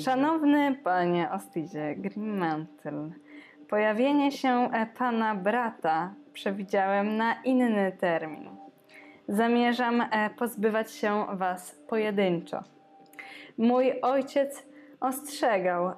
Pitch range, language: 190-260 Hz, Polish